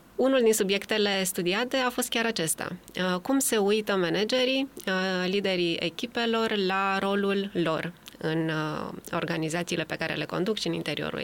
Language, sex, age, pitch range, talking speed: Romanian, female, 20-39, 175-230 Hz, 140 wpm